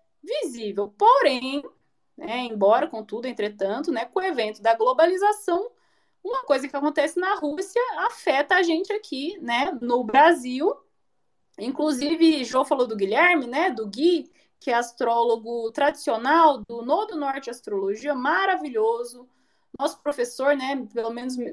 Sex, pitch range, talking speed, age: female, 240-330 Hz, 130 wpm, 20-39